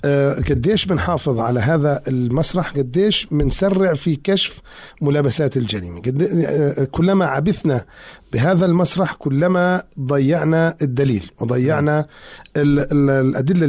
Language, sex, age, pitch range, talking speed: Arabic, male, 50-69, 140-180 Hz, 90 wpm